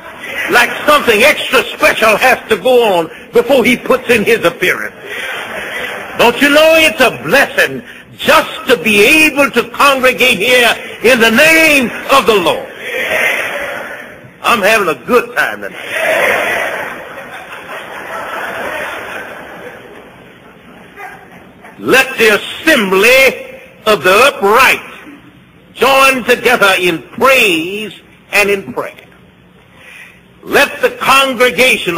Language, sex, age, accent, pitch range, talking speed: English, male, 60-79, American, 200-270 Hz, 105 wpm